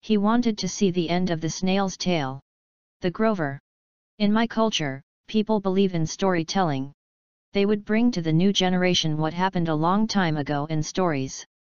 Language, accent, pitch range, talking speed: English, American, 160-195 Hz, 175 wpm